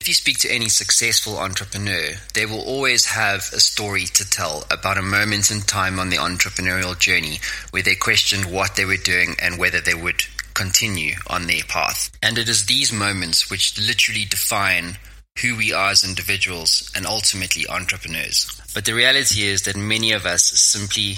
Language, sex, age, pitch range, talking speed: English, male, 20-39, 90-110 Hz, 180 wpm